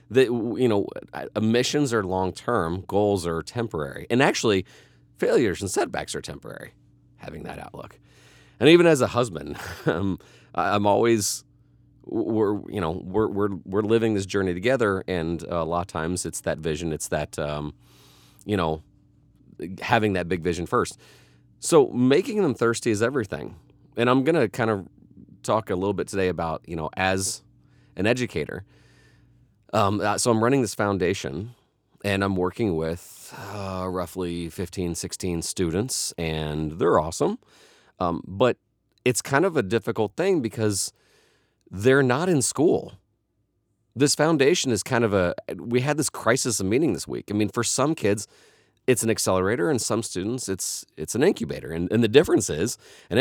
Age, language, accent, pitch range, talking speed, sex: 30-49, English, American, 85-115 Hz, 160 wpm, male